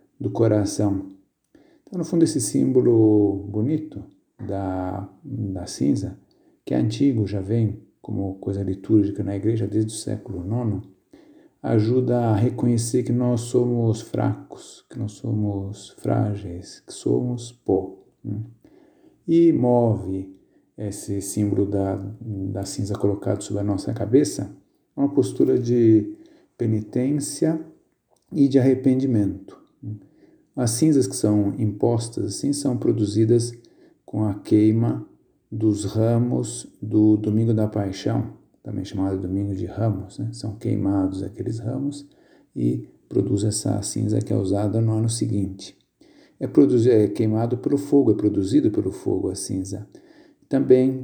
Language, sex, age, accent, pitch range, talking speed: Portuguese, male, 50-69, Brazilian, 100-120 Hz, 125 wpm